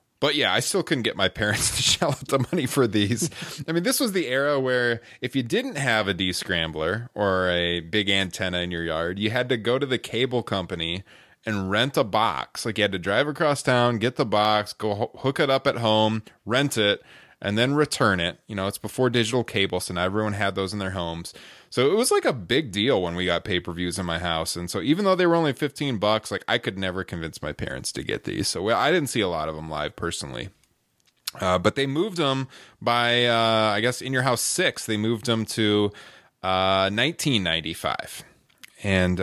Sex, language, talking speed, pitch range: male, English, 230 wpm, 95-135 Hz